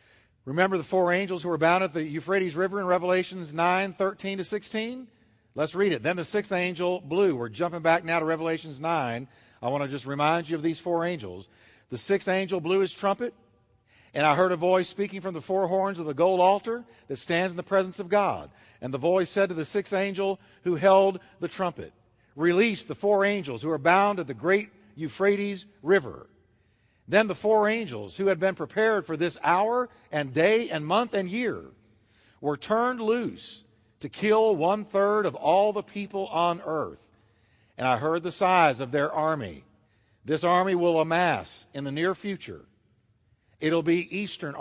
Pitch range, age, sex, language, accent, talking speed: 120-195 Hz, 50-69, male, English, American, 190 wpm